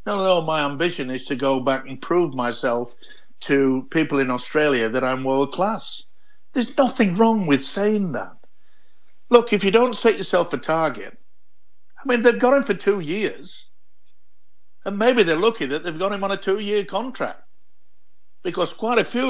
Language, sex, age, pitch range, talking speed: English, male, 60-79, 135-200 Hz, 175 wpm